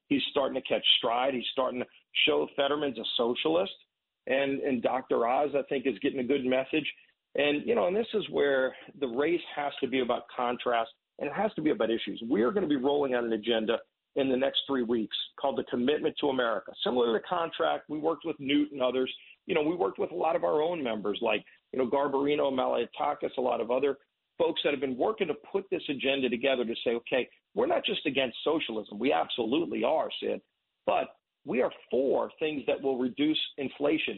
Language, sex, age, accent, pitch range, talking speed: English, male, 40-59, American, 135-170 Hz, 220 wpm